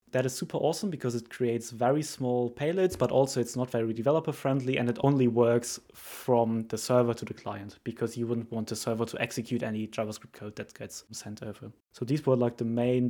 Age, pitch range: 20-39, 115-135 Hz